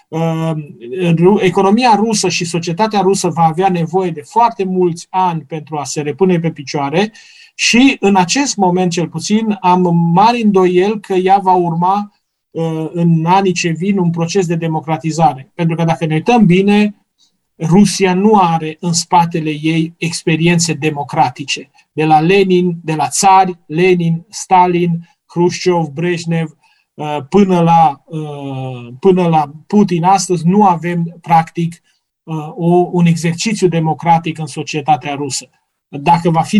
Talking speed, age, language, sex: 135 wpm, 30-49, Romanian, male